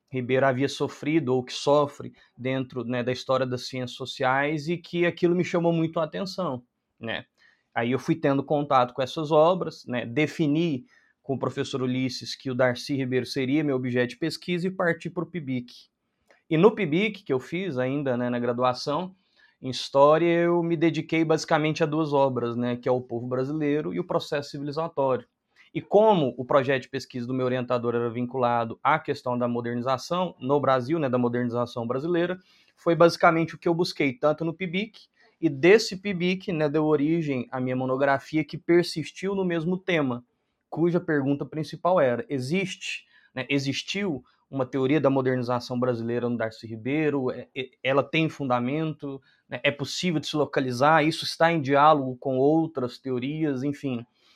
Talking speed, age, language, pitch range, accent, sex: 170 wpm, 20-39, Portuguese, 130-165 Hz, Brazilian, male